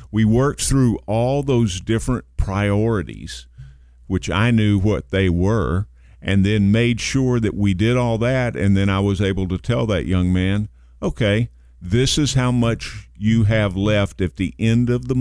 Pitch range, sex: 90-110 Hz, male